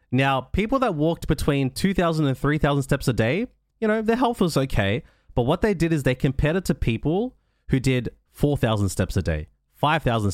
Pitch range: 115-160 Hz